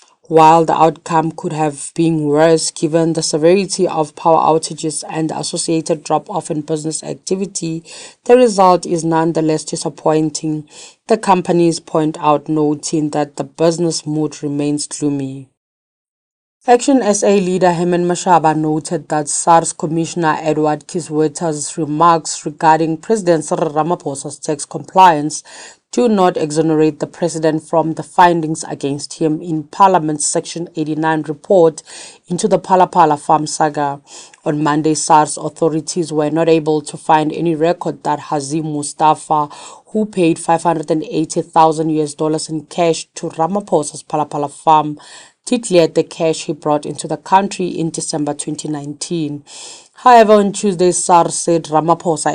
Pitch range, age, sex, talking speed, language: 155-170 Hz, 30-49, female, 130 wpm, English